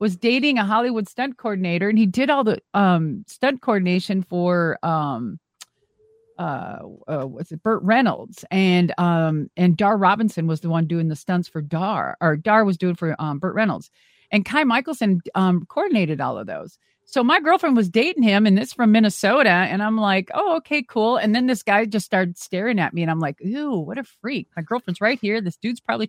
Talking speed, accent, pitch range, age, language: 205 wpm, American, 170-240 Hz, 40-59, English